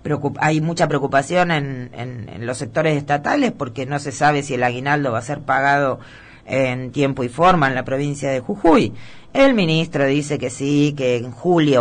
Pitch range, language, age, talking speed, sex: 125-155 Hz, Spanish, 30-49, 190 wpm, female